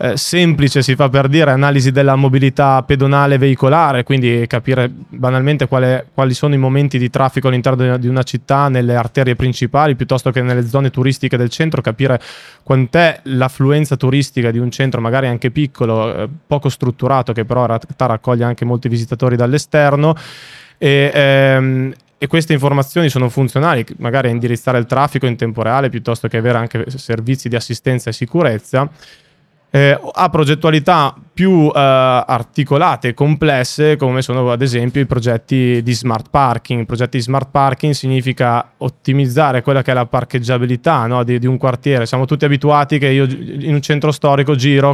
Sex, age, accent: male, 20-39, native